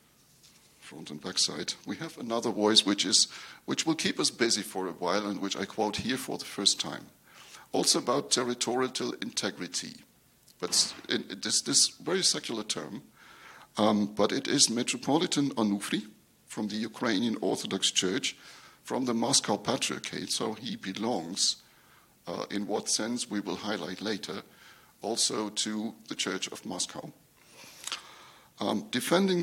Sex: male